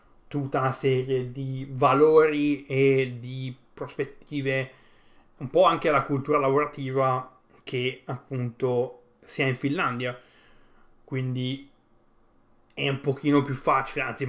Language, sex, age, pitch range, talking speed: Italian, male, 30-49, 130-145 Hz, 115 wpm